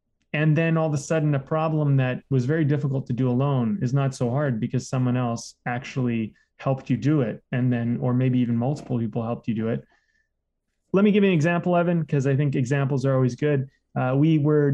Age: 20-39